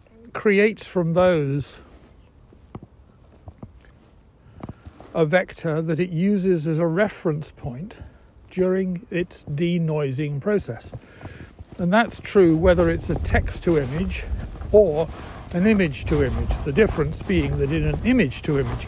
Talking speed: 105 wpm